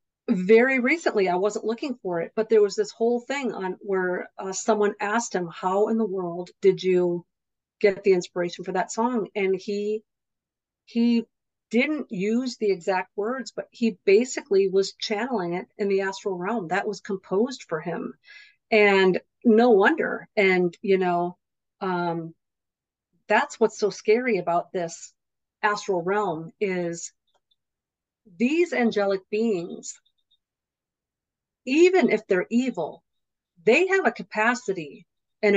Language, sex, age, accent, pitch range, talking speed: English, female, 50-69, American, 180-225 Hz, 140 wpm